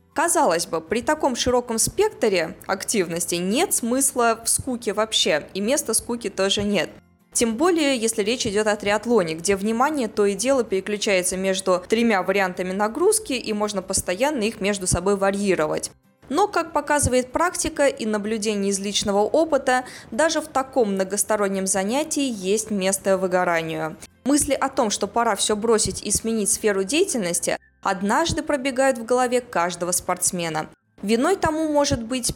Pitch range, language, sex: 195-255 Hz, Russian, female